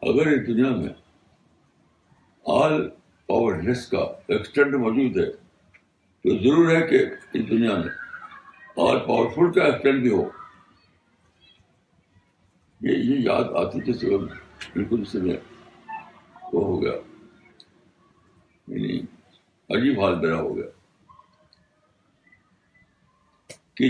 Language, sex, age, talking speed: Urdu, male, 60-79, 95 wpm